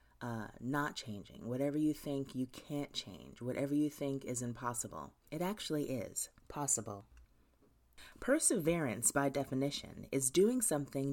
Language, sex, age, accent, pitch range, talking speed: English, female, 30-49, American, 115-165 Hz, 130 wpm